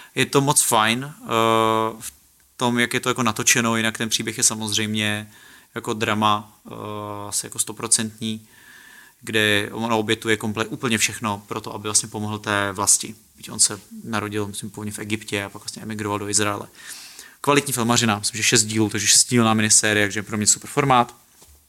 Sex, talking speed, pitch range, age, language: male, 175 wpm, 105-120 Hz, 30-49, Czech